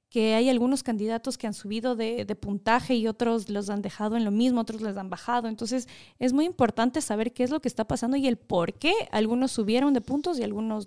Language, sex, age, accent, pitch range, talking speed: Spanish, female, 20-39, Mexican, 215-280 Hz, 235 wpm